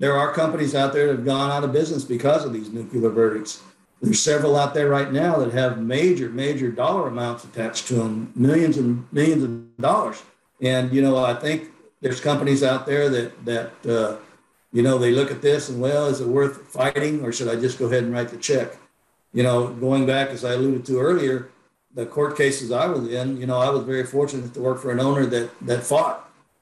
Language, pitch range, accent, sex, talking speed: English, 120-135 Hz, American, male, 225 wpm